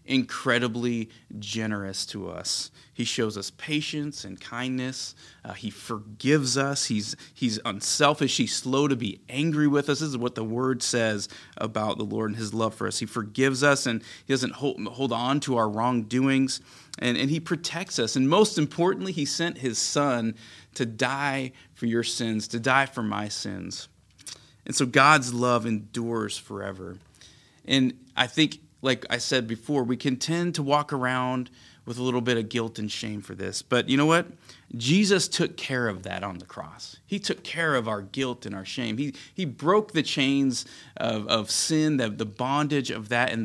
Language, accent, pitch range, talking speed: English, American, 110-145 Hz, 190 wpm